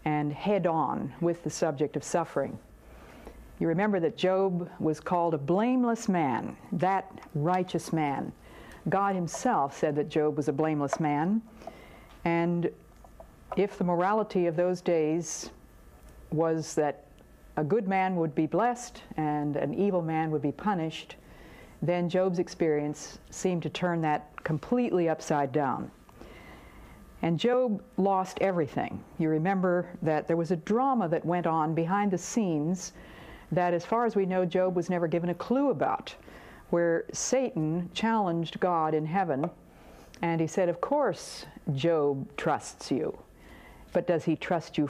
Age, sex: 60-79, female